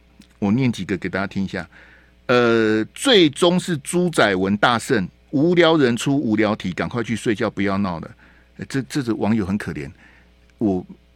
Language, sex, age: Chinese, male, 60-79